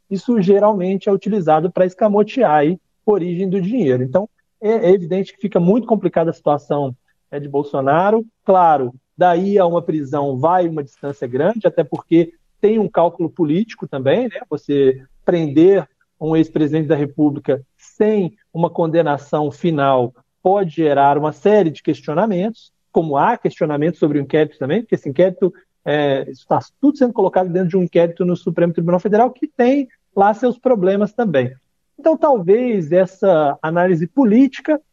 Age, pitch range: 40-59, 155-200 Hz